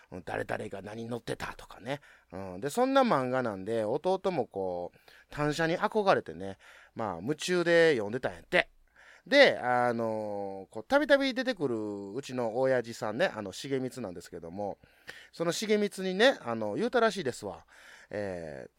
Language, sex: Japanese, male